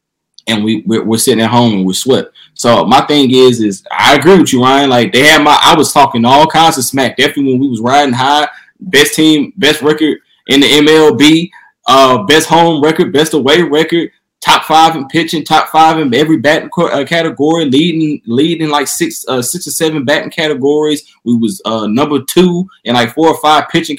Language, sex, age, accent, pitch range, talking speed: English, male, 20-39, American, 130-160 Hz, 205 wpm